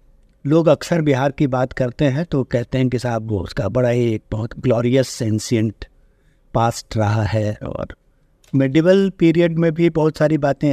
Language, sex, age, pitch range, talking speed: Hindi, male, 50-69, 120-165 Hz, 175 wpm